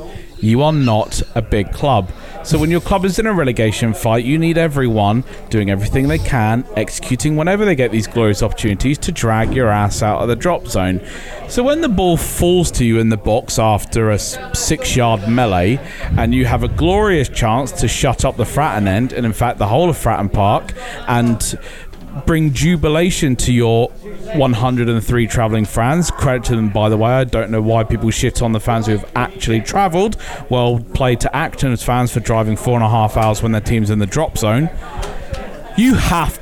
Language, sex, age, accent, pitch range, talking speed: English, male, 40-59, British, 110-155 Hz, 200 wpm